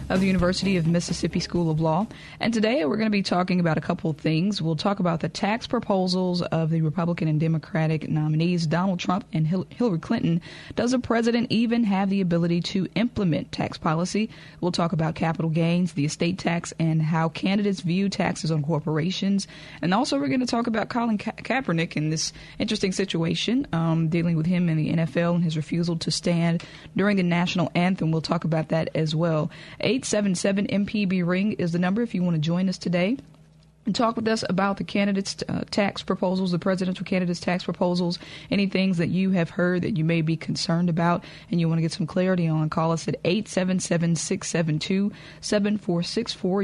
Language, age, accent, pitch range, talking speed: English, 20-39, American, 160-195 Hz, 200 wpm